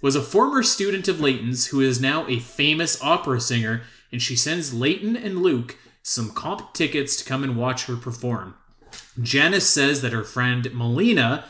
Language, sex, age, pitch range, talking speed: English, male, 30-49, 125-160 Hz, 175 wpm